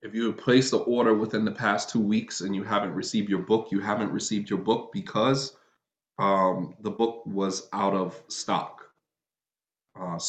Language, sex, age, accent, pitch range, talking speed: English, male, 20-39, American, 100-115 Hz, 180 wpm